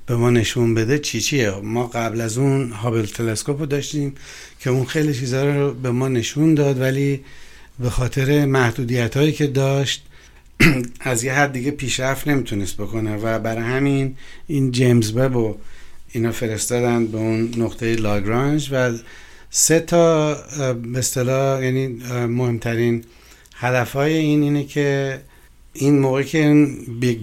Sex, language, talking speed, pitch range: male, Persian, 140 wpm, 115-135 Hz